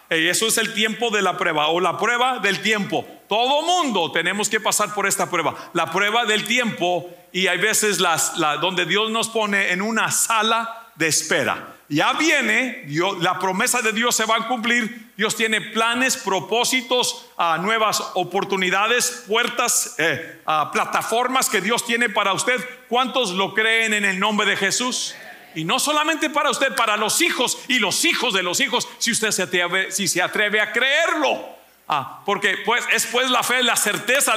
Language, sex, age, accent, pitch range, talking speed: English, male, 50-69, Mexican, 190-245 Hz, 180 wpm